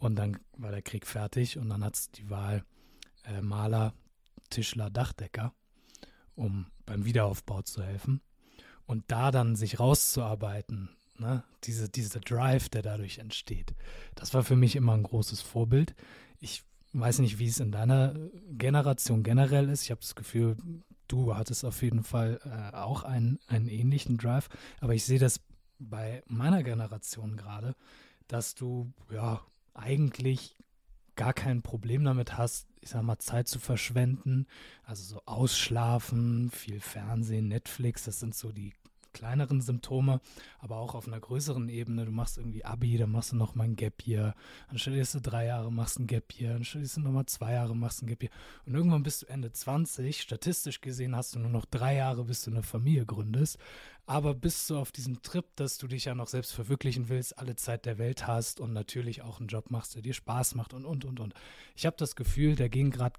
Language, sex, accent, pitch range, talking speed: German, male, German, 110-130 Hz, 190 wpm